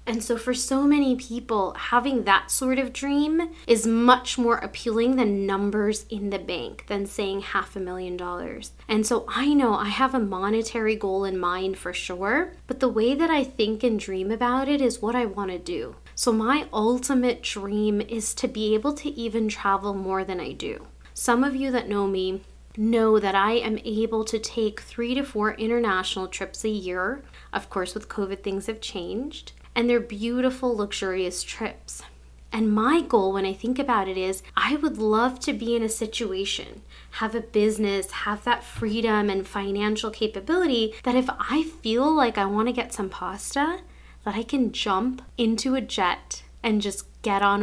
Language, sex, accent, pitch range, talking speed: English, female, American, 200-245 Hz, 185 wpm